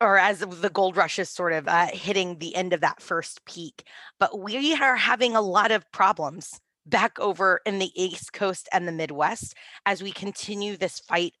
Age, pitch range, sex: 20-39, 165-215 Hz, female